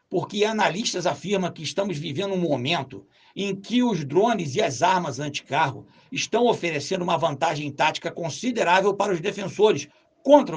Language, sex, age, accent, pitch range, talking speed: Portuguese, male, 60-79, Brazilian, 165-205 Hz, 150 wpm